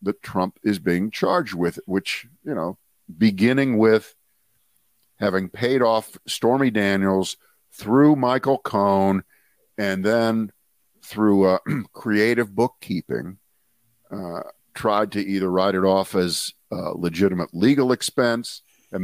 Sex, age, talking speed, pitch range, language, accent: male, 50-69, 120 wpm, 90-115 Hz, English, American